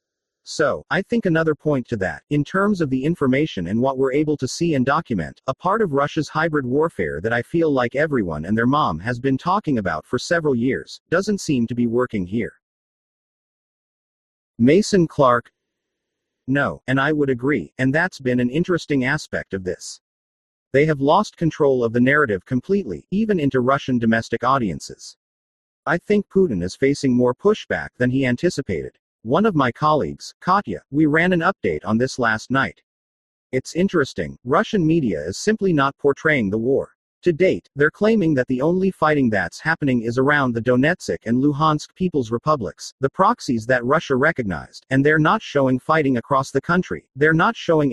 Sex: male